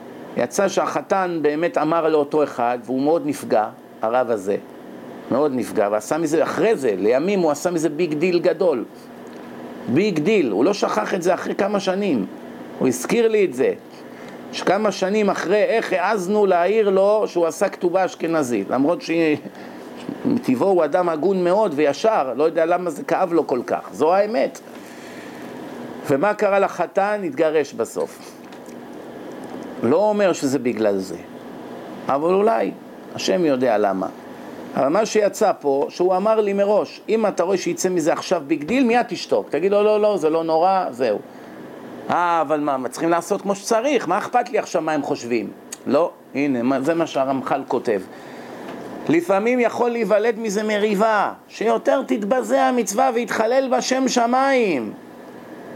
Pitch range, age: 160-220 Hz, 50-69